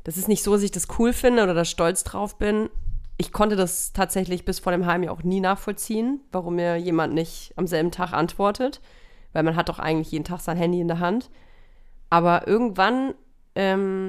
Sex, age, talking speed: female, 30-49, 210 wpm